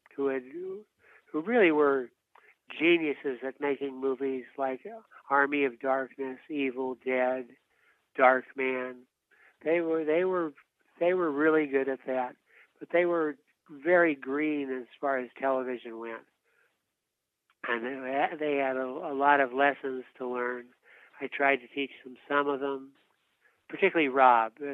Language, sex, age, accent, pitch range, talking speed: English, male, 60-79, American, 125-150 Hz, 140 wpm